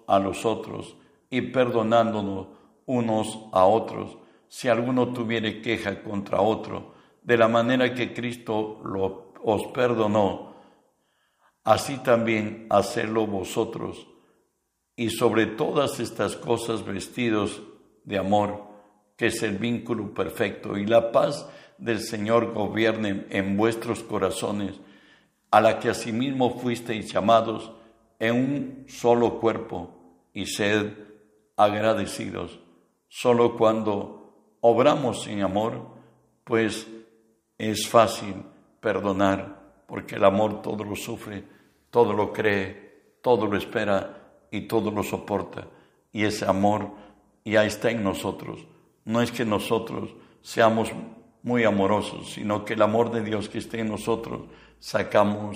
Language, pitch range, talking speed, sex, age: Spanish, 105-115 Hz, 120 wpm, male, 60-79